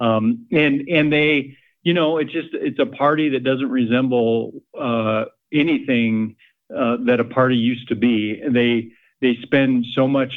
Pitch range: 115-140 Hz